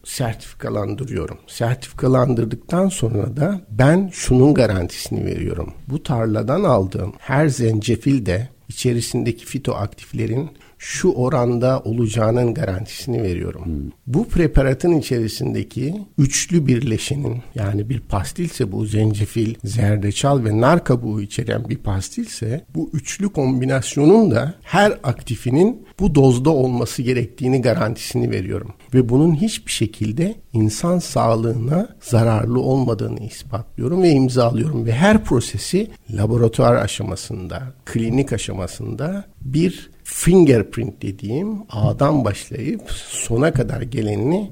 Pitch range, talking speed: 110-140 Hz, 100 wpm